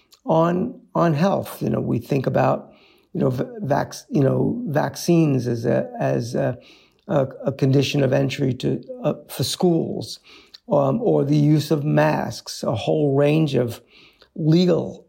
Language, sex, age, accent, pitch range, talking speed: English, male, 50-69, American, 125-165 Hz, 145 wpm